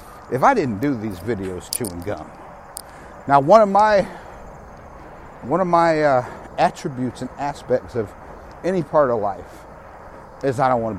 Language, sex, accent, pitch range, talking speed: English, male, American, 105-150 Hz, 145 wpm